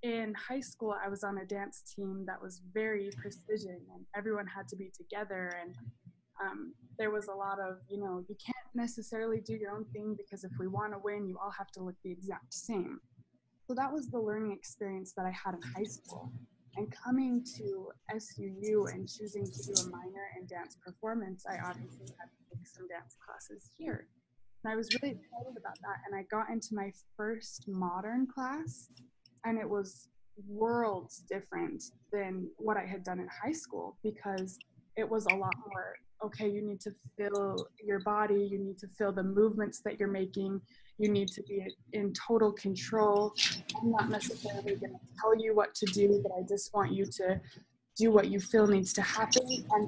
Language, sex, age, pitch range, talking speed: English, female, 20-39, 190-215 Hz, 195 wpm